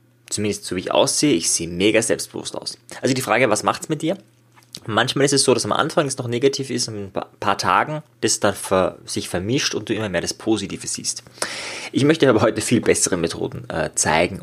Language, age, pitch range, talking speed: German, 20-39, 95-125 Hz, 220 wpm